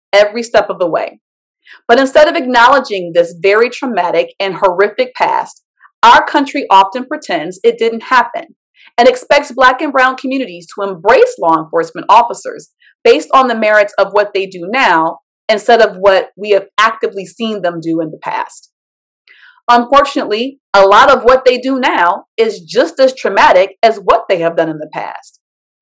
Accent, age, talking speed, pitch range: American, 30-49, 170 wpm, 205-300 Hz